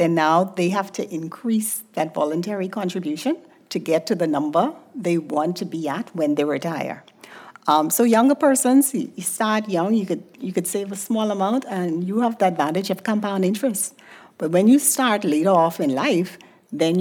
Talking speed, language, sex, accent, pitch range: 190 wpm, English, female, American, 175-230 Hz